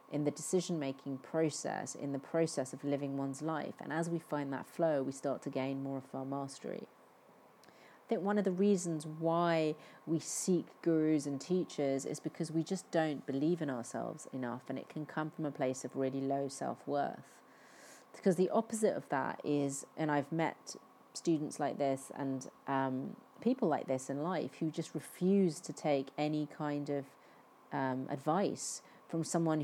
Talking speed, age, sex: 175 wpm, 40-59, female